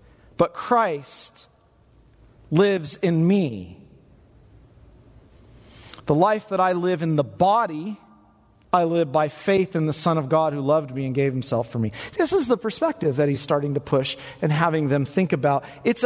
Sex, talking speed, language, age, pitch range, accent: male, 170 wpm, English, 40-59, 130-190 Hz, American